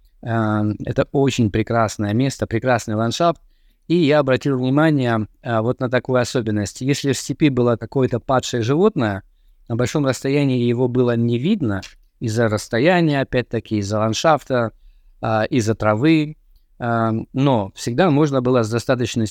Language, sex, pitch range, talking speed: Russian, male, 115-145 Hz, 125 wpm